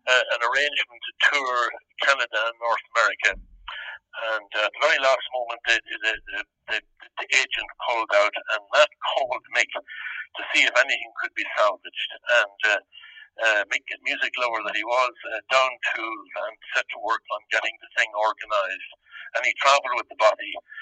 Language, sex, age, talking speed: English, male, 60-79, 180 wpm